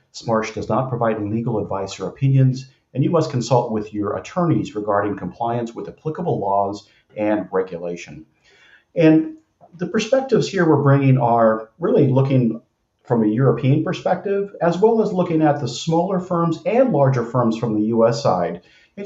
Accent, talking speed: American, 160 wpm